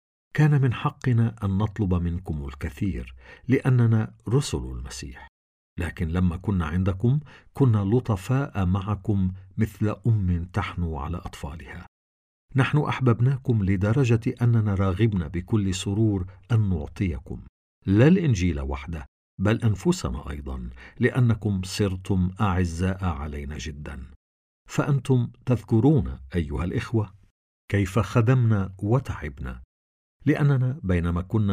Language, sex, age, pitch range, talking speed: Arabic, male, 50-69, 85-120 Hz, 100 wpm